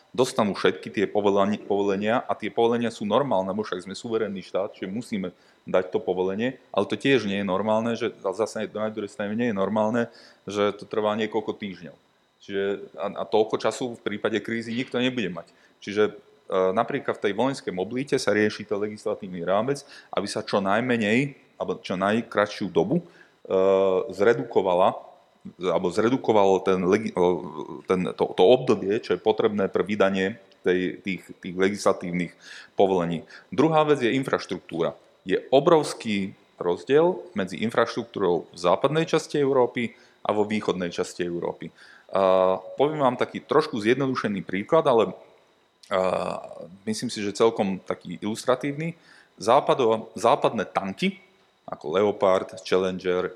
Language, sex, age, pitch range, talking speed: Slovak, male, 30-49, 95-120 Hz, 135 wpm